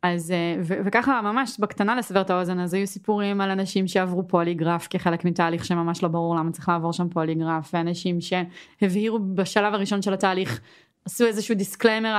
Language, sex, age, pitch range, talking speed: Hebrew, female, 20-39, 190-250 Hz, 170 wpm